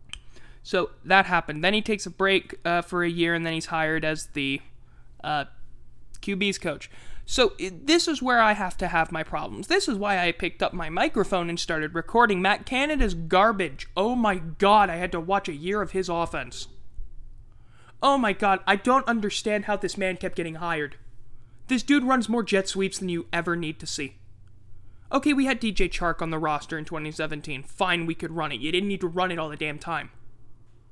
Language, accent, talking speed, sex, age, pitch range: English, American, 205 wpm, male, 20-39, 155-200 Hz